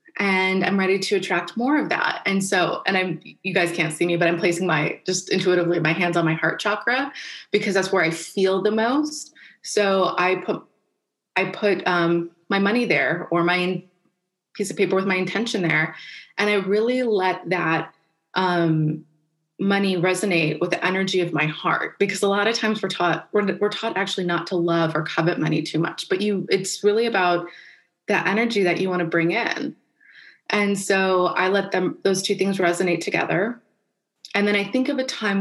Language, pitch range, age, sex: English, 170-200 Hz, 20-39, female